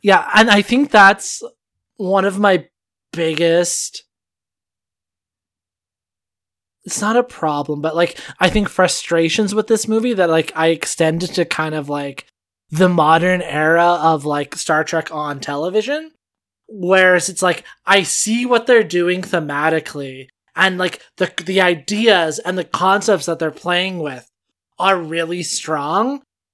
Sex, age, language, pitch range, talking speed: male, 20-39, English, 160-195 Hz, 140 wpm